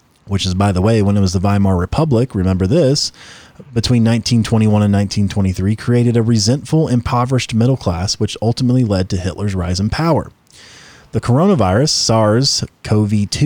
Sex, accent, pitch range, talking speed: male, American, 100-135 Hz, 150 wpm